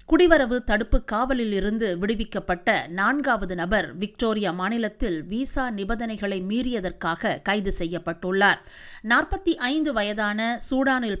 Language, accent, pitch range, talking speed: Tamil, native, 200-260 Hz, 85 wpm